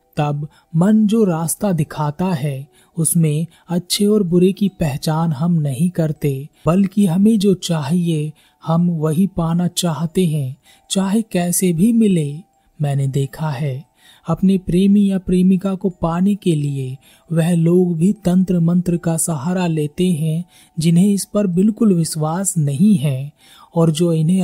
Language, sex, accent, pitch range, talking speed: Hindi, male, native, 155-185 Hz, 140 wpm